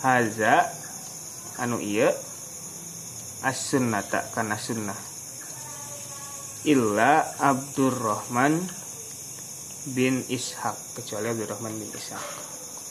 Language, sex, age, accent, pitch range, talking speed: Indonesian, male, 20-39, native, 110-145 Hz, 75 wpm